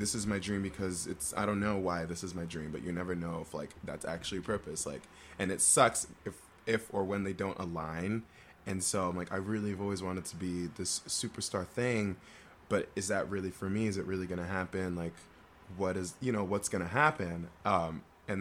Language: English